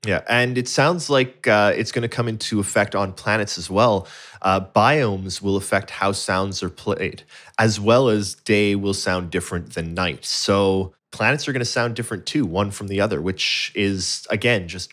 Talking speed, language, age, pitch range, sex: 195 wpm, English, 20-39, 95-120 Hz, male